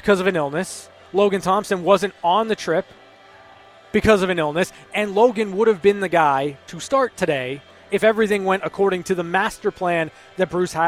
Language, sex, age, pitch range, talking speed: English, male, 20-39, 170-225 Hz, 190 wpm